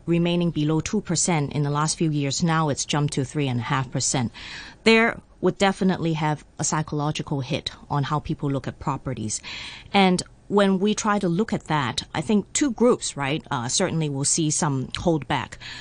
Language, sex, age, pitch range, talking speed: English, female, 30-49, 135-175 Hz, 175 wpm